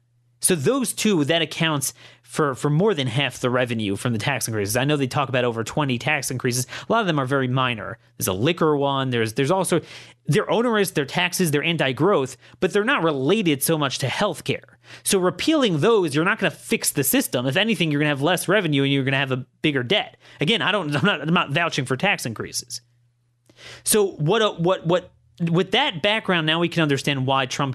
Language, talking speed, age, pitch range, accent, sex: English, 215 wpm, 30-49, 125-170 Hz, American, male